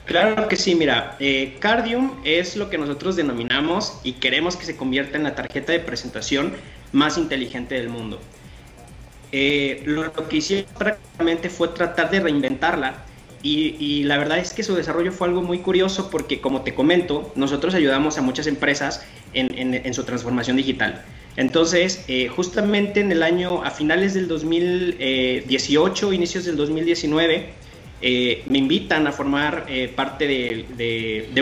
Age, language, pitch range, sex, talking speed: 30-49, Spanish, 130-170 Hz, male, 160 wpm